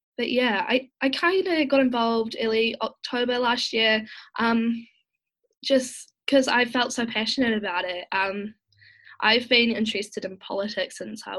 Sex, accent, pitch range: female, Australian, 195-250 Hz